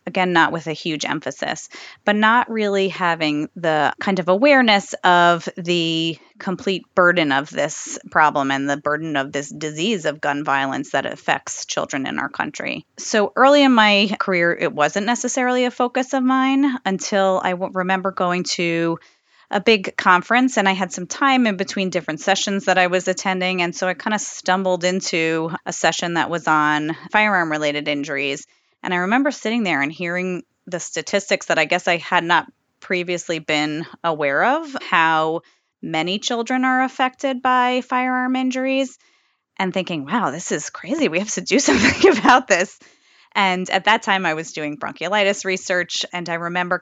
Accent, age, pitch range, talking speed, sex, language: American, 20-39, 160-215 Hz, 175 wpm, female, English